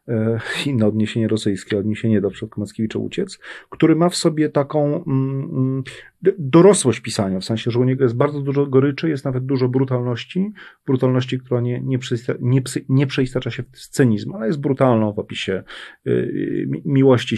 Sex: male